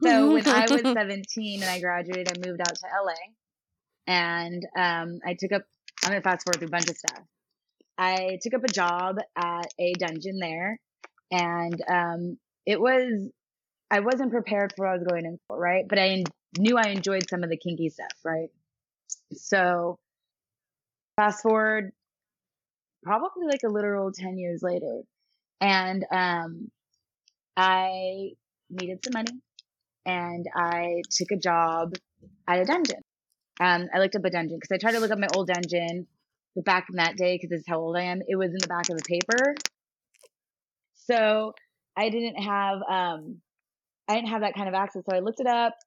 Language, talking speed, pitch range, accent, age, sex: English, 180 wpm, 175-210 Hz, American, 20-39, female